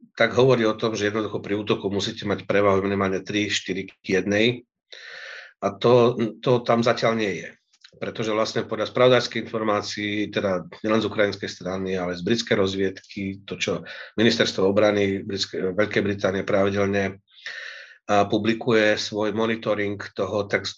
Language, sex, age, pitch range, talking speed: Slovak, male, 40-59, 105-120 Hz, 135 wpm